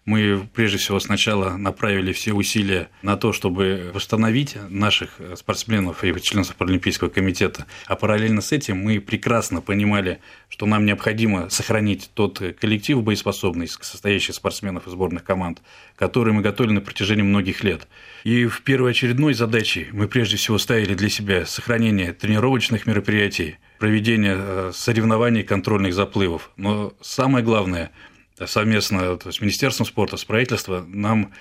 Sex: male